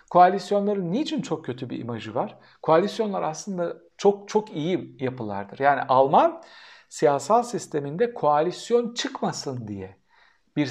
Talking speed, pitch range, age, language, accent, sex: 120 wpm, 130-200 Hz, 60-79, Turkish, native, male